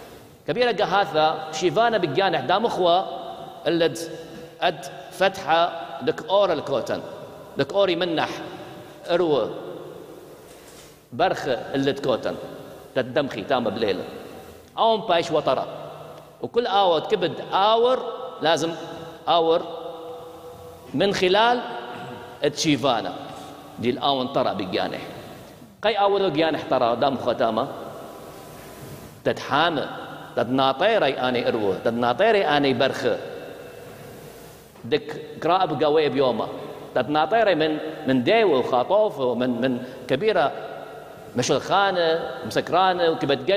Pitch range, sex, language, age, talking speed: 145-200 Hz, male, English, 50-69, 90 wpm